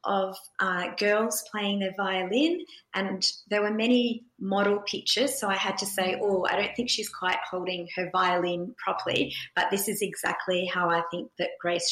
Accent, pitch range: Australian, 180-210 Hz